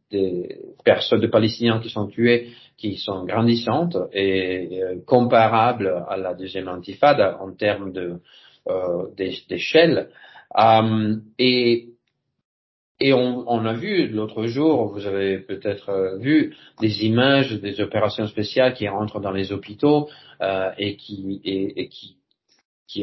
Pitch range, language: 100-120 Hz, French